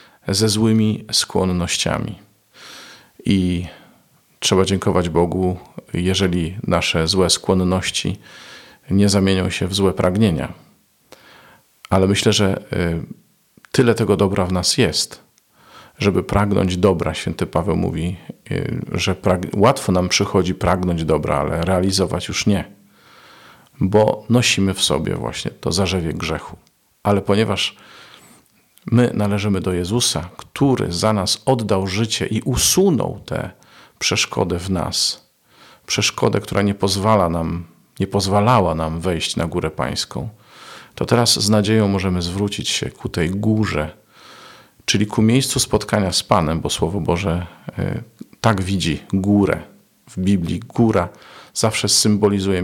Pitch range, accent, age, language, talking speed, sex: 90-105 Hz, native, 40-59, Polish, 120 wpm, male